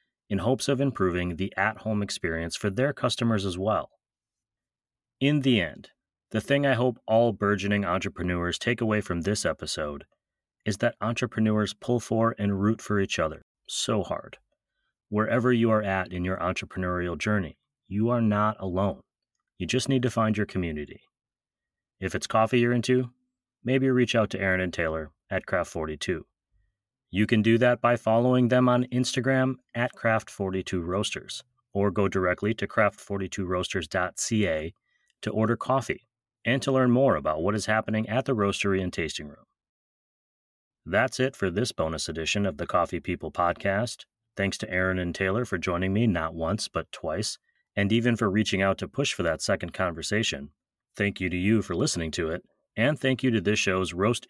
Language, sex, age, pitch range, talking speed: English, male, 30-49, 95-120 Hz, 170 wpm